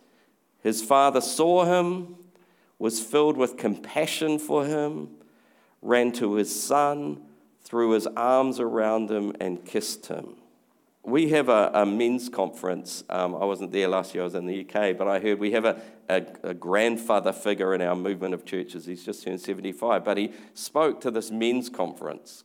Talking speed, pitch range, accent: 175 wpm, 100-135 Hz, Australian